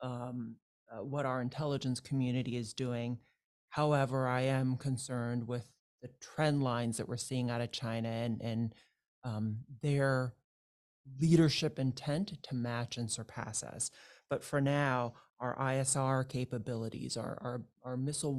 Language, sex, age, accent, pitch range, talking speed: English, male, 30-49, American, 120-140 Hz, 140 wpm